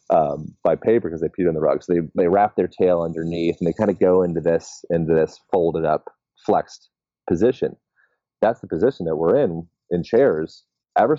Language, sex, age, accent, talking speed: English, male, 30-49, American, 205 wpm